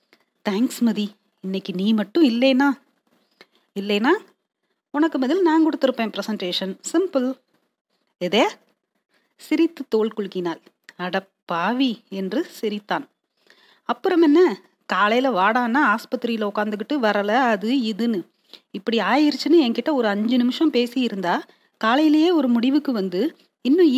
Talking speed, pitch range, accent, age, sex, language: 105 wpm, 205-275 Hz, native, 30-49, female, Tamil